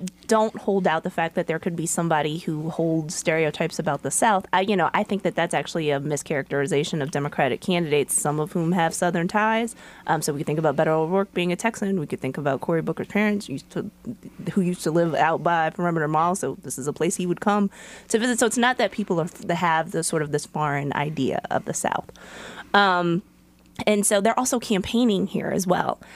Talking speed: 225 wpm